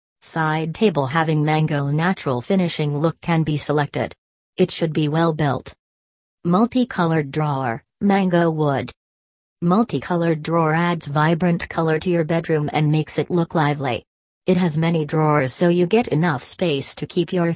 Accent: American